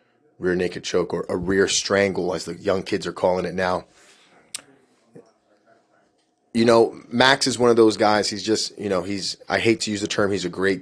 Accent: American